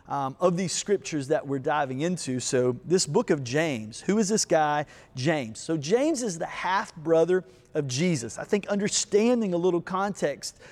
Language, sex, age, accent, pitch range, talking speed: English, male, 30-49, American, 145-190 Hz, 175 wpm